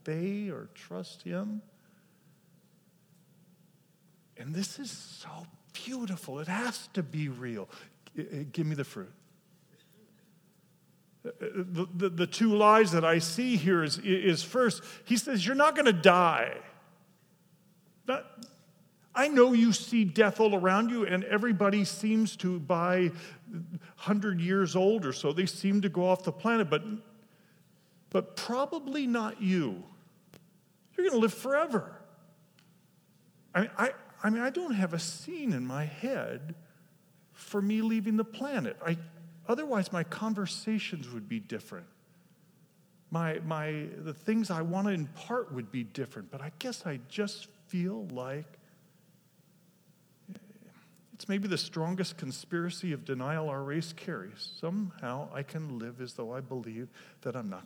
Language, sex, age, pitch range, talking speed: English, male, 50-69, 165-210 Hz, 140 wpm